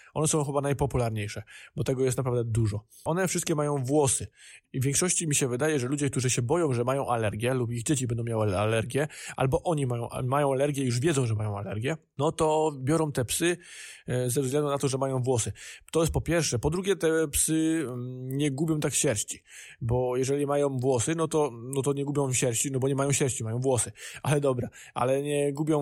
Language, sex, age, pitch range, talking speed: Polish, male, 20-39, 125-145 Hz, 210 wpm